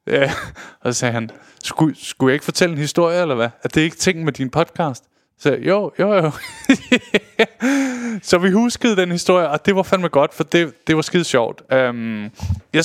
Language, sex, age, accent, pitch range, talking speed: Danish, male, 20-39, native, 130-180 Hz, 210 wpm